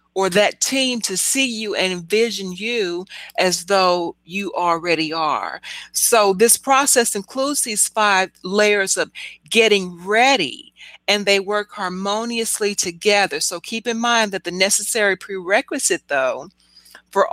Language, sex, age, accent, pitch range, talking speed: English, female, 40-59, American, 185-220 Hz, 135 wpm